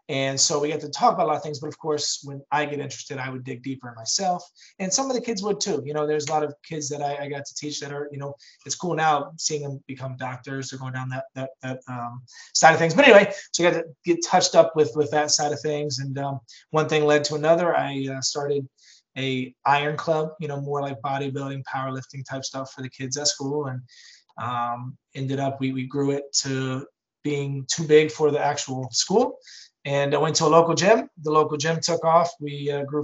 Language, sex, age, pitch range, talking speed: English, male, 20-39, 135-155 Hz, 250 wpm